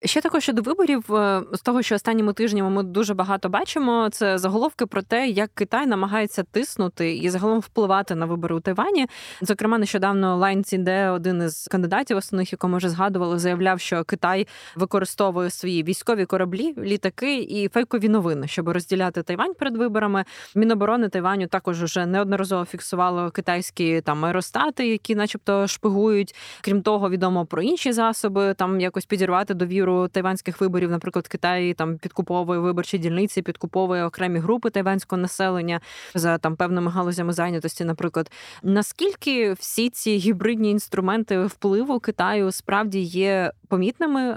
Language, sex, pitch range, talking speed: Ukrainian, female, 180-215 Hz, 145 wpm